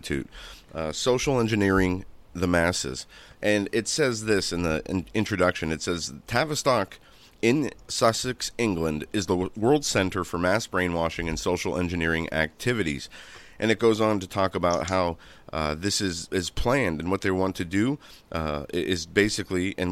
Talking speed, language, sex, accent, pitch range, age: 165 wpm, English, male, American, 85-110 Hz, 30-49